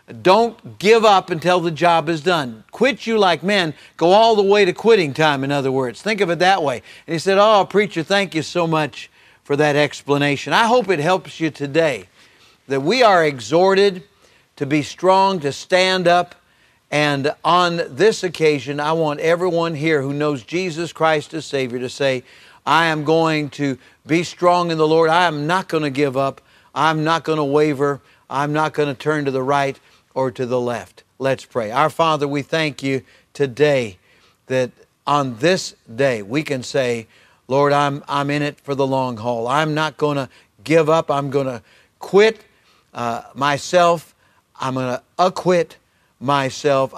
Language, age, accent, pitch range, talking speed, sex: English, 50-69, American, 135-170 Hz, 185 wpm, male